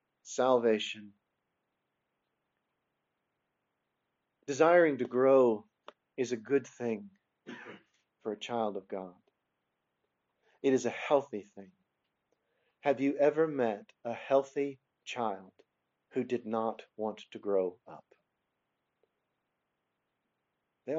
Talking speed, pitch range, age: 95 wpm, 110-140 Hz, 50-69